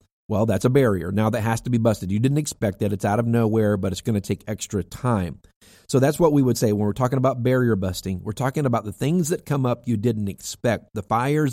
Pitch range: 105-130 Hz